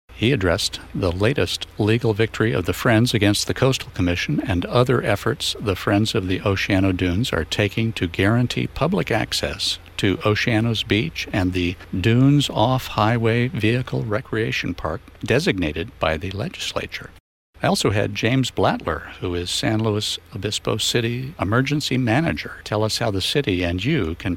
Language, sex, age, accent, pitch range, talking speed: English, male, 60-79, American, 95-120 Hz, 155 wpm